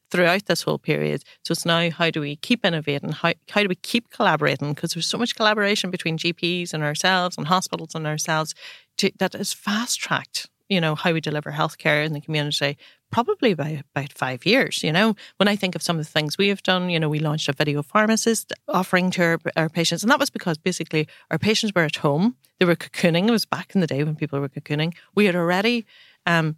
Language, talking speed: English, 230 wpm